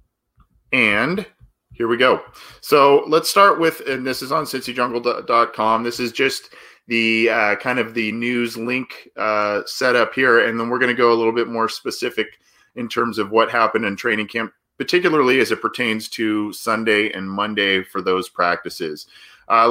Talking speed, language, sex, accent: 175 wpm, English, male, American